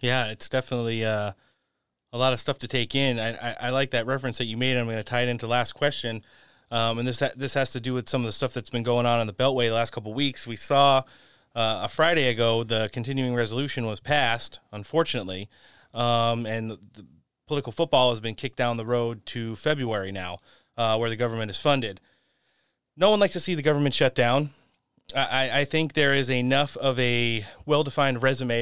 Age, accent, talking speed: 30-49, American, 220 wpm